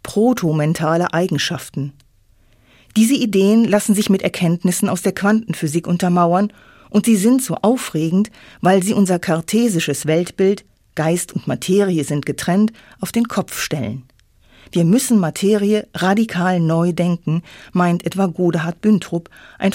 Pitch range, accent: 155-205 Hz, German